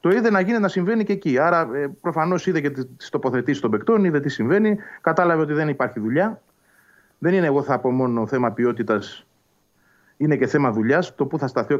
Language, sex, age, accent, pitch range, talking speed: Greek, male, 30-49, native, 115-170 Hz, 210 wpm